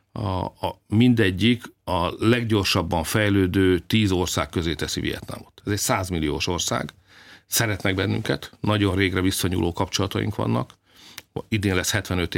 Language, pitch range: Hungarian, 90-110 Hz